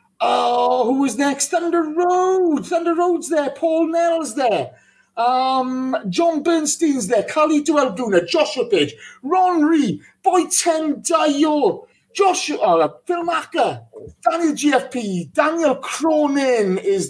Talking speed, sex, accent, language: 120 wpm, male, British, English